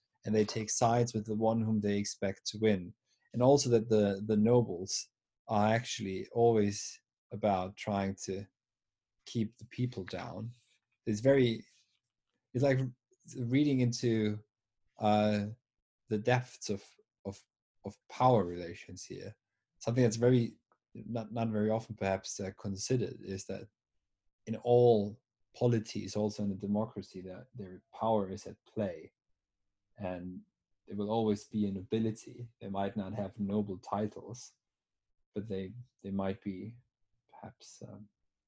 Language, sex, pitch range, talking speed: English, male, 100-120 Hz, 135 wpm